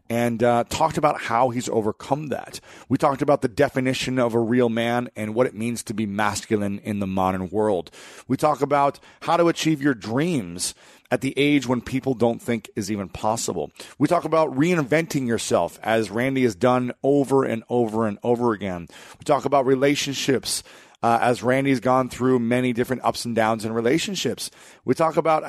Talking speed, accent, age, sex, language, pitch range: 190 wpm, American, 30-49, male, English, 110-140 Hz